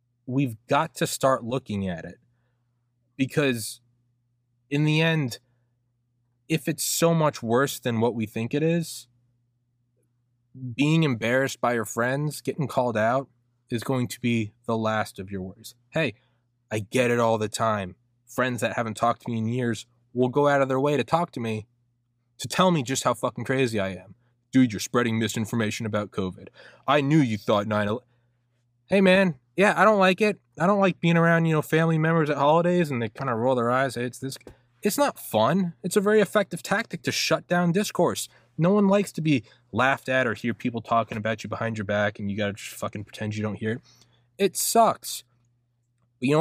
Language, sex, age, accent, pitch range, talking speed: English, male, 20-39, American, 115-145 Hz, 200 wpm